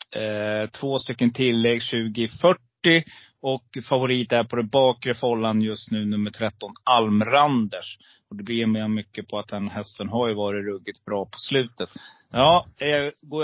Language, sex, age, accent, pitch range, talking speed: Swedish, male, 30-49, native, 110-130 Hz, 150 wpm